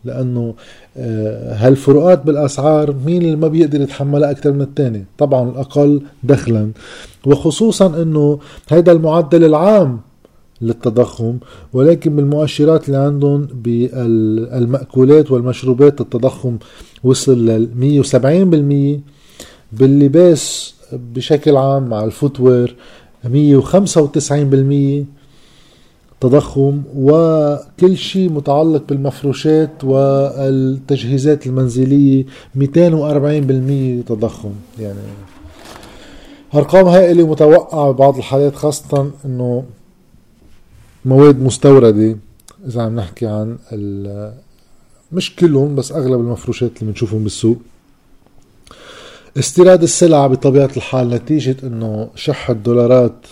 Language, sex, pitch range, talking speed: Arabic, male, 120-150 Hz, 85 wpm